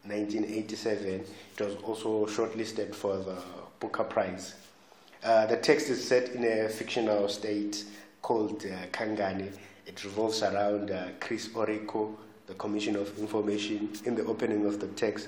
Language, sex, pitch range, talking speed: English, male, 100-110 Hz, 145 wpm